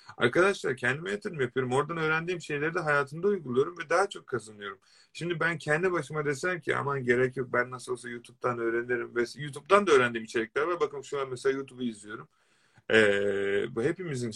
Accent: native